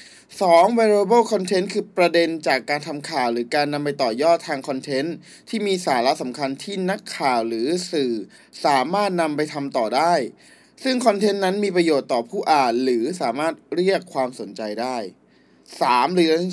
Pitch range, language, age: 140-190 Hz, Thai, 20-39